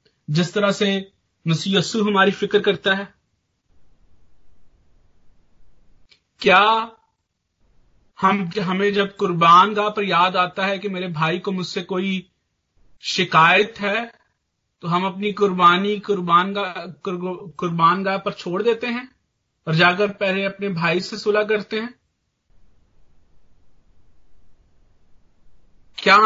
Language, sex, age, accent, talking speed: English, male, 40-59, Indian, 110 wpm